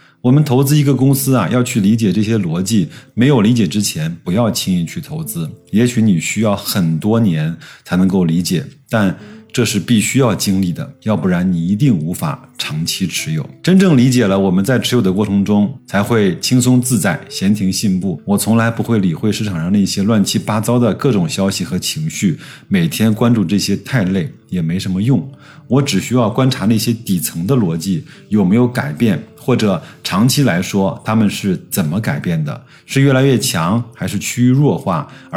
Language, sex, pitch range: Chinese, male, 105-145 Hz